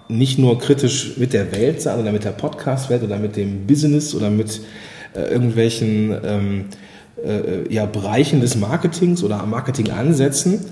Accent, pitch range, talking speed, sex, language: German, 110-150 Hz, 160 wpm, male, German